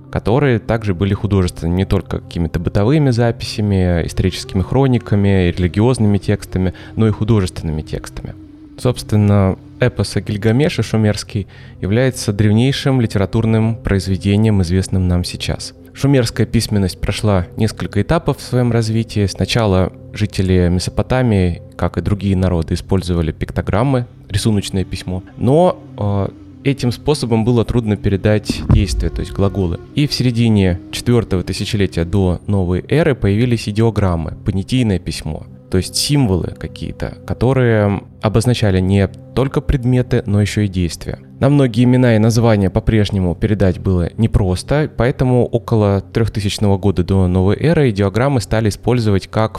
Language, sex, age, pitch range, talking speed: Russian, male, 20-39, 95-120 Hz, 125 wpm